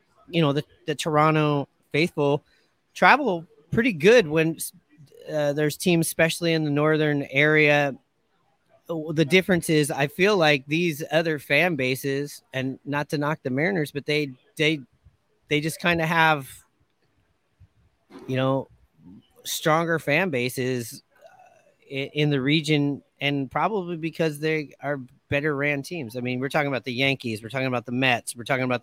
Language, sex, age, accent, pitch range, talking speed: English, male, 30-49, American, 130-160 Hz, 155 wpm